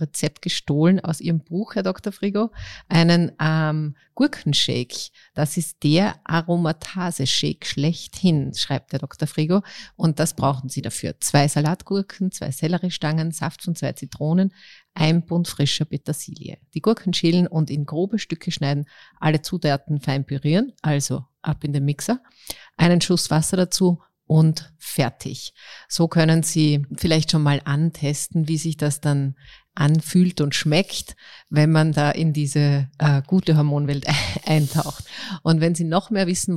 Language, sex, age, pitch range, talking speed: German, female, 30-49, 145-175 Hz, 145 wpm